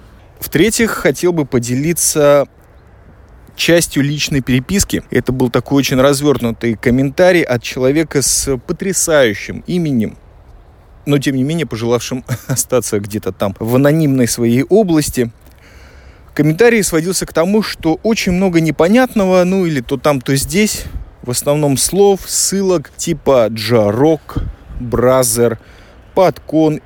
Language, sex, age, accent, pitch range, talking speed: Russian, male, 20-39, native, 115-170 Hz, 115 wpm